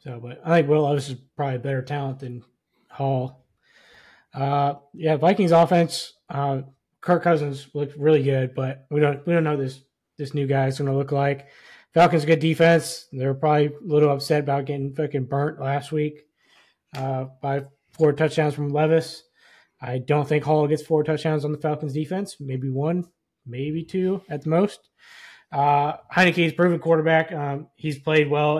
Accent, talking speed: American, 175 wpm